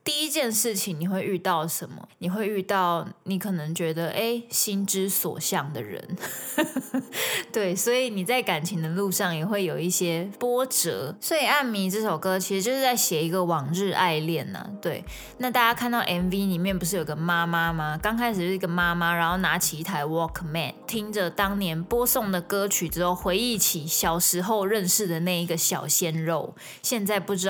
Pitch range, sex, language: 175-220 Hz, female, Chinese